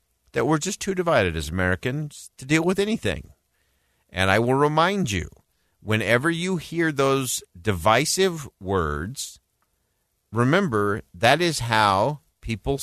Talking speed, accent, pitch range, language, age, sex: 125 wpm, American, 90-140 Hz, English, 50-69, male